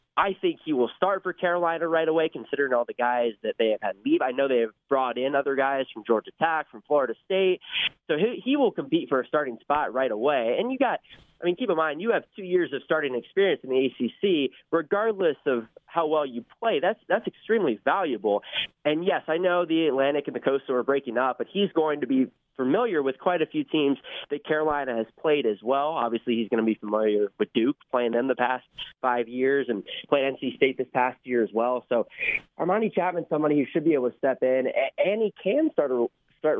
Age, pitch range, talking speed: 20-39, 125-165 Hz, 230 wpm